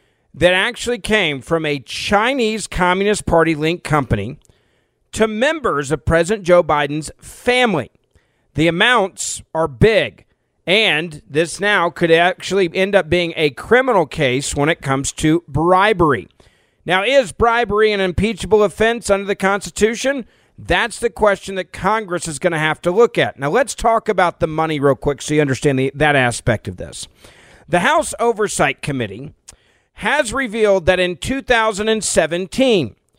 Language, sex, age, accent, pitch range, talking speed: English, male, 40-59, American, 150-210 Hz, 145 wpm